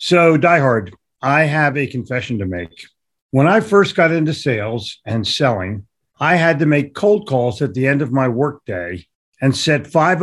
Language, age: English, 50-69